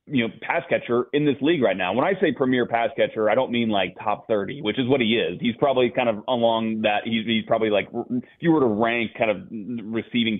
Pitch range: 110-125 Hz